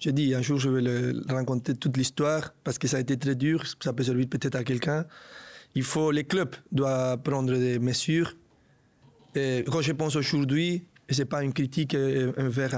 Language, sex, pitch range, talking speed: French, male, 130-155 Hz, 195 wpm